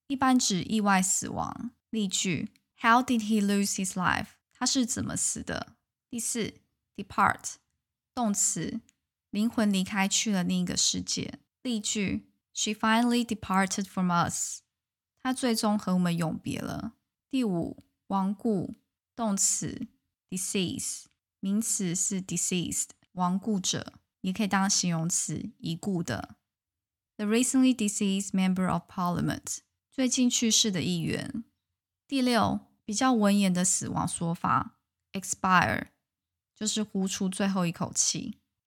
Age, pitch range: 10-29, 185-230 Hz